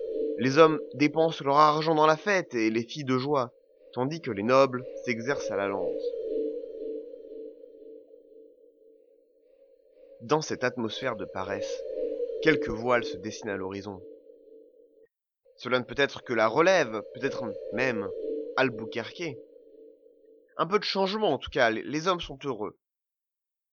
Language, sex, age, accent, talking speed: French, male, 30-49, French, 135 wpm